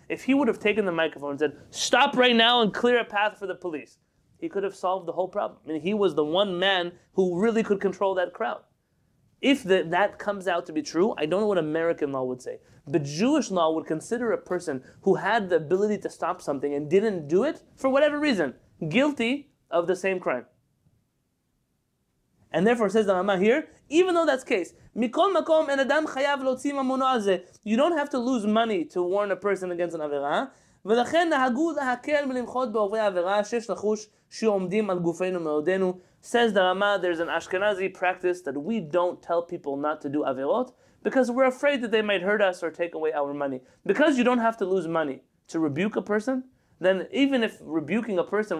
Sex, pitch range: male, 170-245 Hz